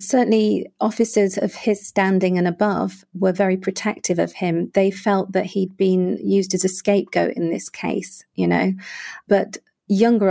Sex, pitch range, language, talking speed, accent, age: female, 175-205 Hz, English, 165 wpm, British, 40-59